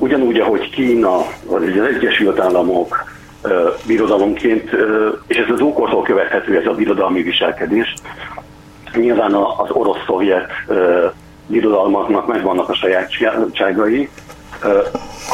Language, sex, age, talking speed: Hungarian, male, 60-79, 95 wpm